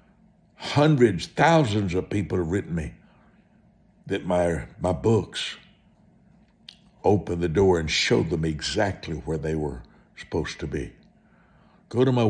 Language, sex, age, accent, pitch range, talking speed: English, male, 60-79, American, 75-110 Hz, 130 wpm